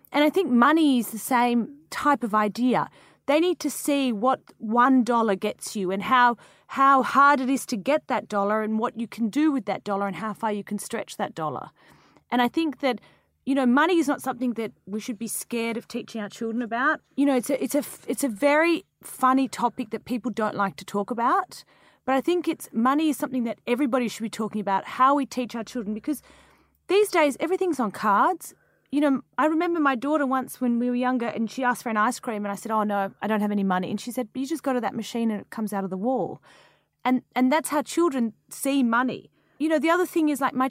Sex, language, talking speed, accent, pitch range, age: female, English, 245 wpm, Australian, 215-280 Hz, 30-49